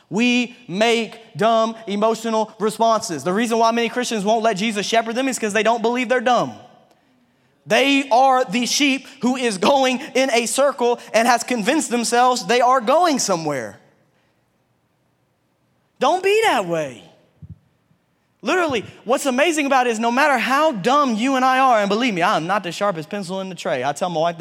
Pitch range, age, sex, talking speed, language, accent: 205-275 Hz, 20-39, male, 180 wpm, English, American